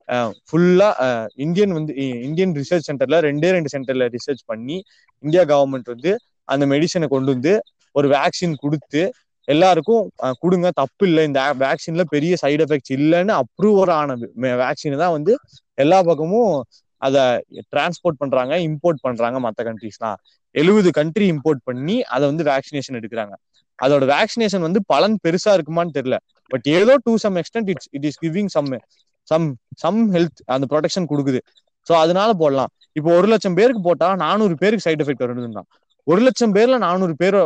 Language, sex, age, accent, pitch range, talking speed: Tamil, male, 20-39, native, 140-185 Hz, 145 wpm